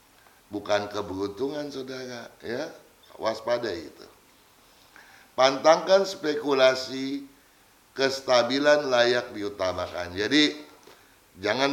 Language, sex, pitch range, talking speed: Indonesian, male, 105-145 Hz, 65 wpm